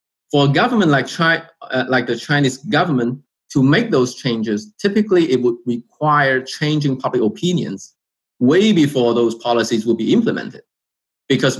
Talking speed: 150 wpm